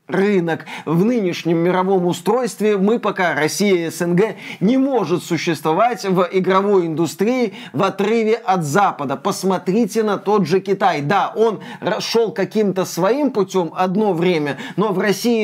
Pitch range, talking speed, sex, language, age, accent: 175-215 Hz, 140 wpm, male, Russian, 20-39, native